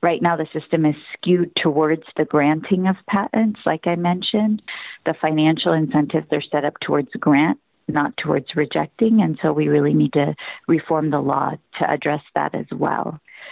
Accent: American